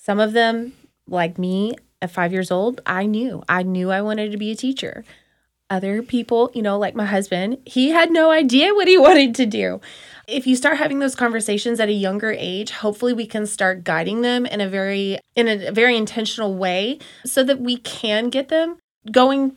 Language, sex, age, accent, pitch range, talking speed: English, female, 20-39, American, 200-255 Hz, 200 wpm